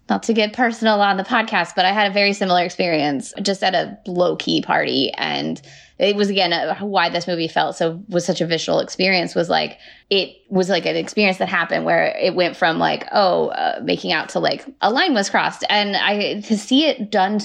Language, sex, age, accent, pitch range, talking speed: English, female, 20-39, American, 180-225 Hz, 215 wpm